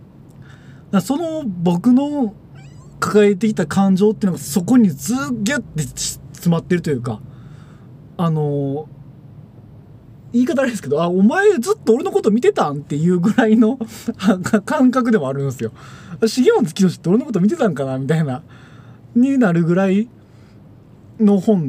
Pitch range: 125-210 Hz